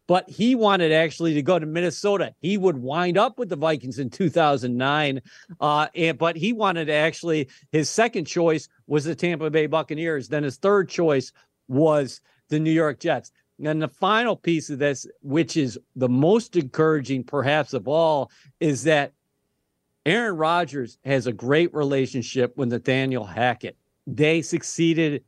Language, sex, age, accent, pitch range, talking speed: English, male, 50-69, American, 135-160 Hz, 155 wpm